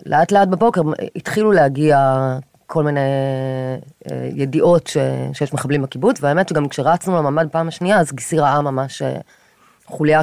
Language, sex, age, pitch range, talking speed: Hebrew, female, 30-49, 130-160 Hz, 135 wpm